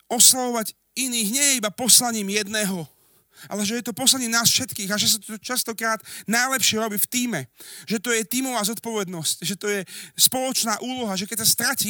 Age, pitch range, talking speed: 40-59, 175-230 Hz, 185 wpm